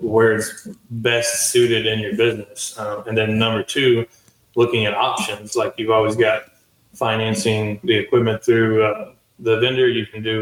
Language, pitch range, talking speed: English, 110-125 Hz, 165 wpm